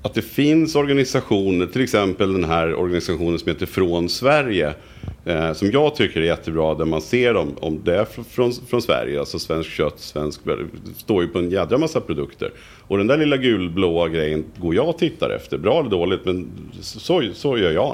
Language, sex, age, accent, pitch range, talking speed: Swedish, male, 50-69, Norwegian, 80-105 Hz, 205 wpm